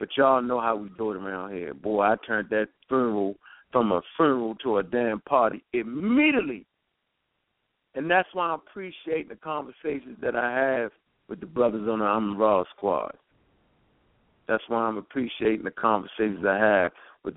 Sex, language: male, English